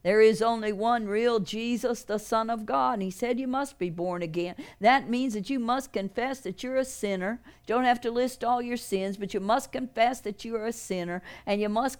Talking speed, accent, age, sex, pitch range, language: 240 wpm, American, 50-69, female, 195-225 Hz, English